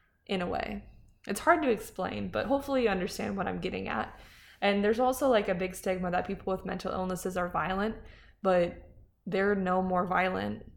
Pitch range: 185-215 Hz